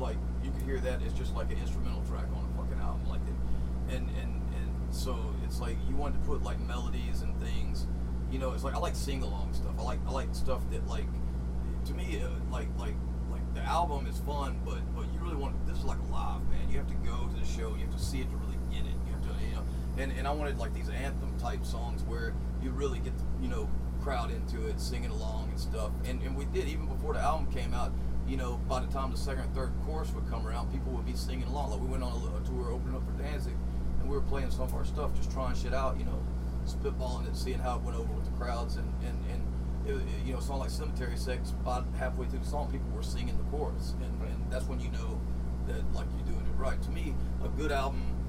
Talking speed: 260 wpm